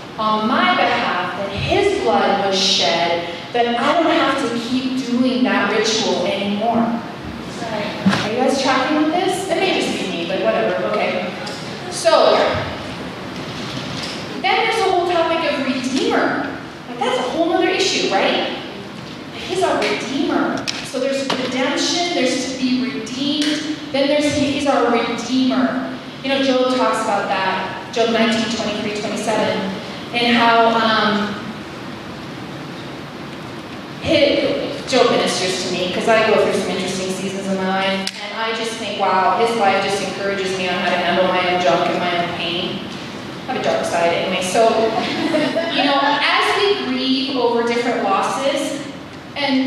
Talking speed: 150 wpm